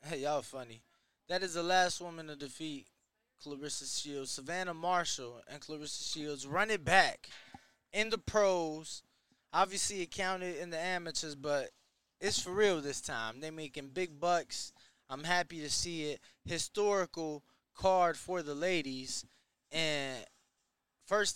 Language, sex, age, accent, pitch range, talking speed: English, male, 20-39, American, 140-180 Hz, 145 wpm